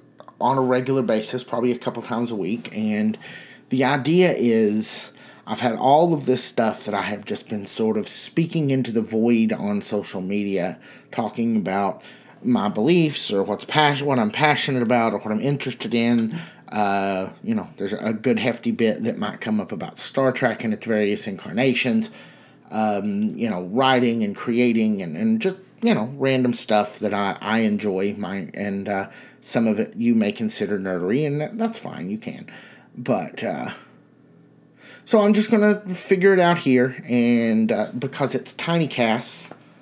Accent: American